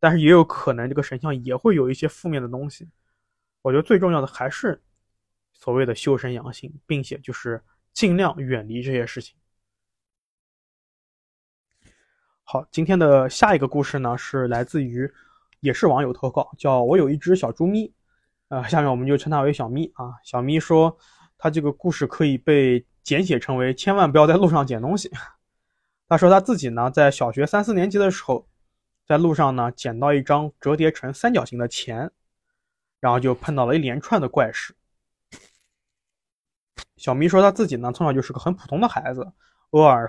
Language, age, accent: Chinese, 20-39, native